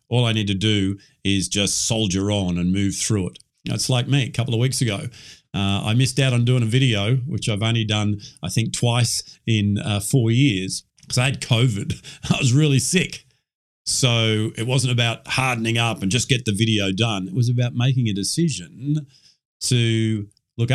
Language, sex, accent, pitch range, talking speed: English, male, Australian, 100-130 Hz, 195 wpm